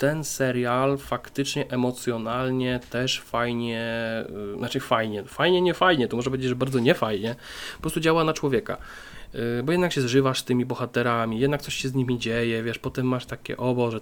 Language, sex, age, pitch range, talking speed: Polish, male, 20-39, 120-145 Hz, 180 wpm